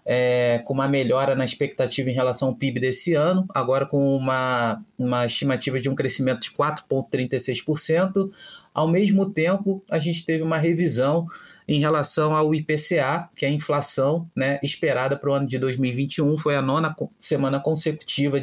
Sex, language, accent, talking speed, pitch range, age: male, Portuguese, Brazilian, 160 wpm, 130-155 Hz, 20-39